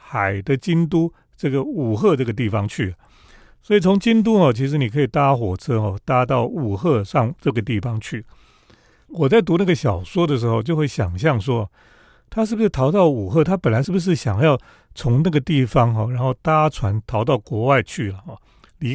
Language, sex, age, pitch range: Chinese, male, 40-59, 120-170 Hz